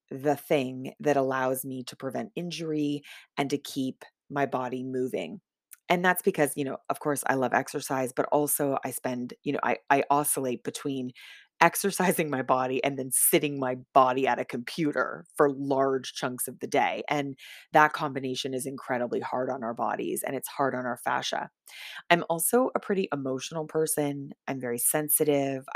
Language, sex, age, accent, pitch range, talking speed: English, female, 20-39, American, 130-160 Hz, 175 wpm